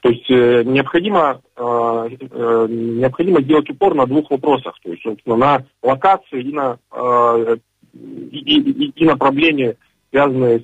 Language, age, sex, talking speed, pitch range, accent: Russian, 40-59, male, 125 wpm, 115-135 Hz, native